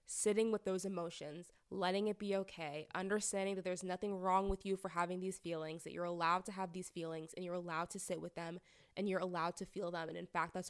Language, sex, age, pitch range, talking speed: English, female, 20-39, 180-210 Hz, 240 wpm